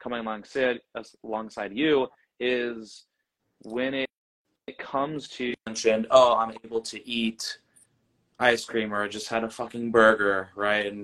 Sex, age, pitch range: male, 20-39, 105-120 Hz